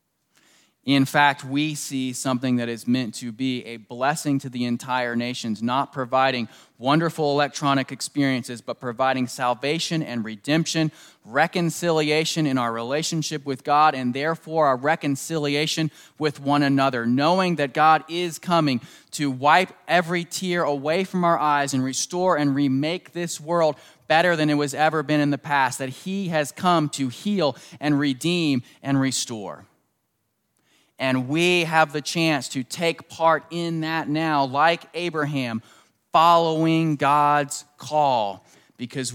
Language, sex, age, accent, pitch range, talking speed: English, male, 20-39, American, 125-160 Hz, 145 wpm